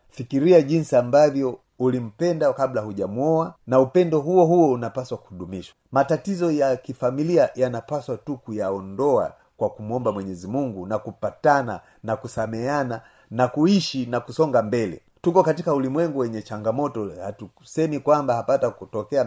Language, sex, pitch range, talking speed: Swahili, male, 110-150 Hz, 125 wpm